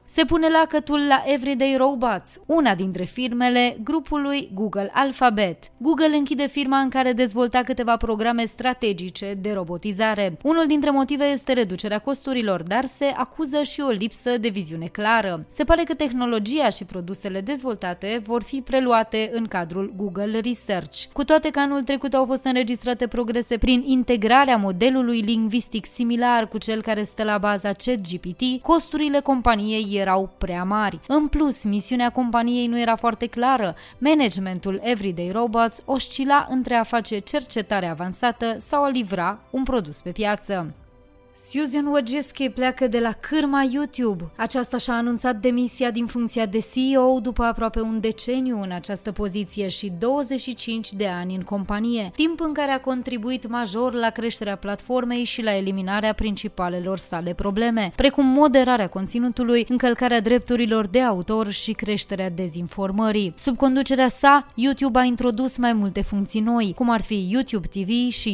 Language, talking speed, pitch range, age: Romanian, 150 wpm, 205-260 Hz, 20-39